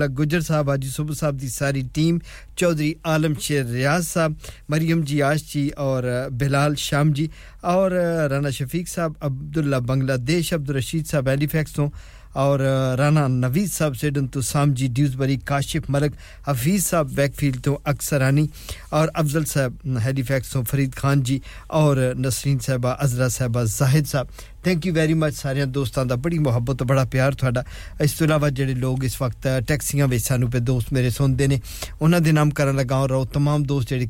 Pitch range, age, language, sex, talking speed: 130-150 Hz, 50-69, English, male, 155 wpm